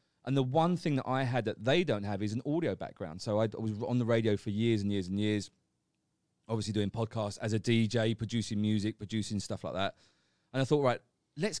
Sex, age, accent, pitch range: male, 30-49, British, 105-135 Hz